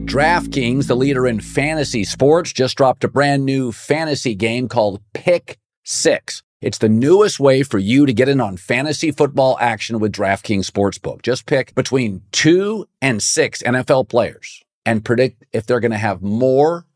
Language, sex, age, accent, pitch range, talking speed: English, male, 50-69, American, 105-130 Hz, 170 wpm